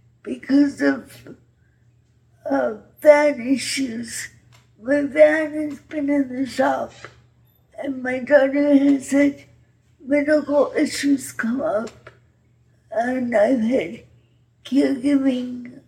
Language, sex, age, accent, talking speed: English, female, 60-79, American, 95 wpm